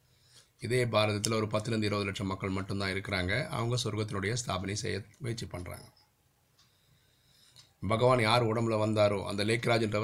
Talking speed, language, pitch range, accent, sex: 125 wpm, Tamil, 105-125 Hz, native, male